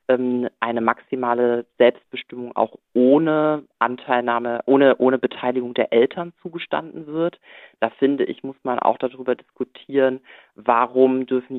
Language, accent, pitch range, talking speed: German, German, 120-135 Hz, 120 wpm